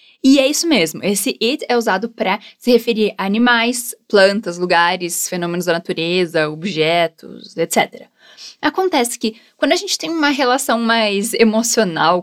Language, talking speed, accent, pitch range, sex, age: Portuguese, 145 wpm, Brazilian, 190-265 Hz, female, 10-29